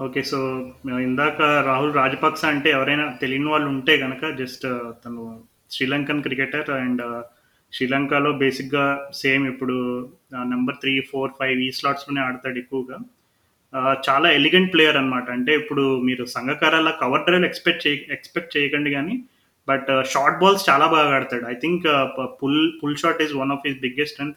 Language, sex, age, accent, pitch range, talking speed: Telugu, male, 20-39, native, 135-155 Hz, 150 wpm